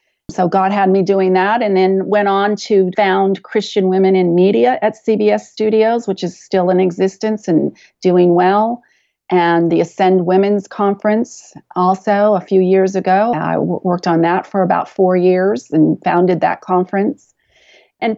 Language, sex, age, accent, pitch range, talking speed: English, female, 40-59, American, 175-210 Hz, 165 wpm